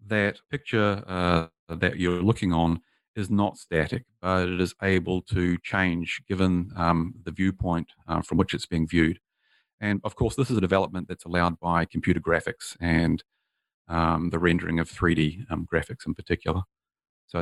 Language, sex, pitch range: English, male, 85-95 Hz